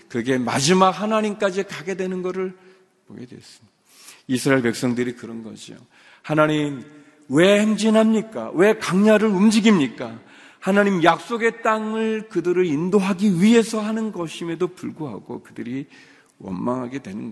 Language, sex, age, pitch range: Korean, male, 40-59, 115-180 Hz